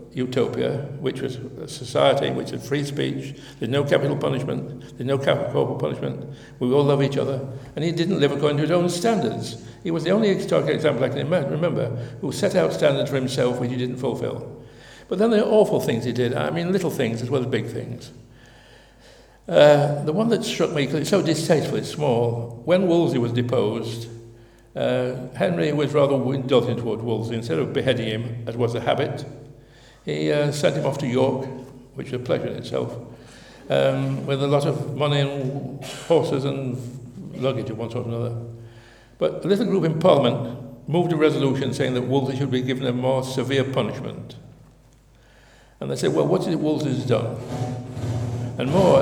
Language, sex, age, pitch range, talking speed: English, male, 60-79, 120-145 Hz, 195 wpm